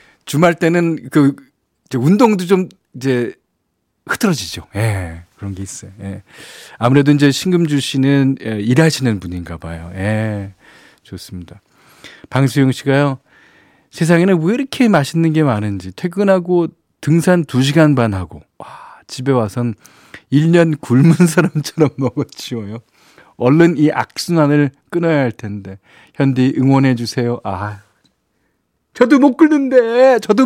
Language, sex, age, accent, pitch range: Korean, male, 40-59, native, 115-180 Hz